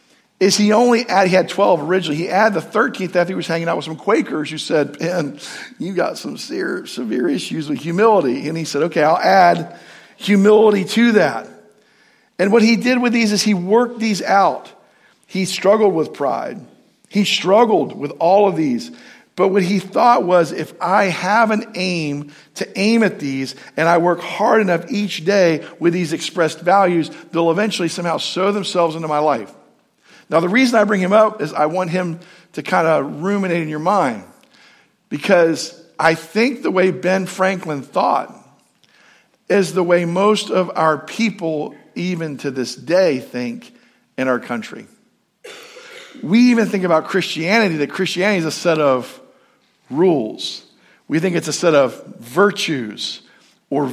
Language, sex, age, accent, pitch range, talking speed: English, male, 50-69, American, 165-215 Hz, 170 wpm